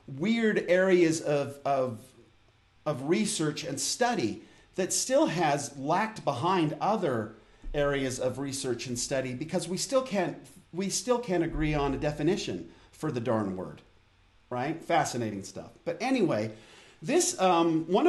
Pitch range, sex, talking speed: 135-185 Hz, male, 140 wpm